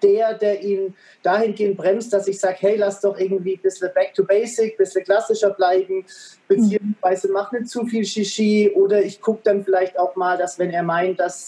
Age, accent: 30-49, German